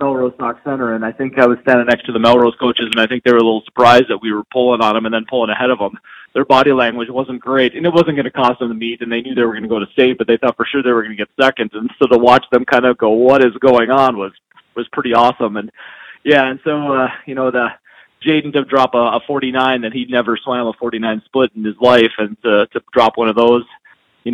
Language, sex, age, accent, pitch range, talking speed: English, male, 30-49, American, 110-130 Hz, 285 wpm